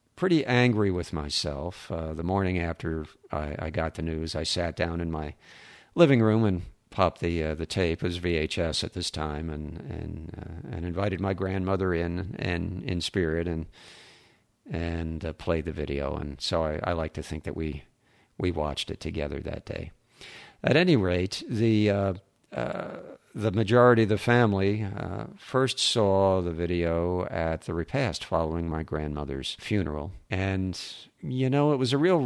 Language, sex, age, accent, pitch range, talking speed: English, male, 50-69, American, 80-105 Hz, 175 wpm